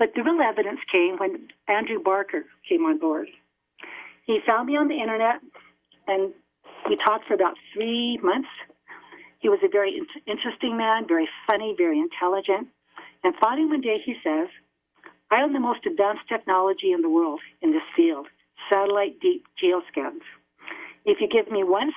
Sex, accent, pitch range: female, American, 195-320 Hz